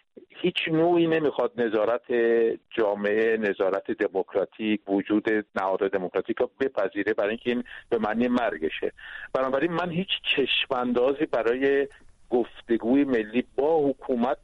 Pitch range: 115-160 Hz